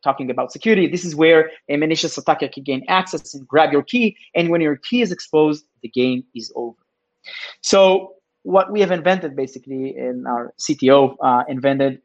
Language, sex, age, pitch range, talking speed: English, male, 30-49, 135-180 Hz, 185 wpm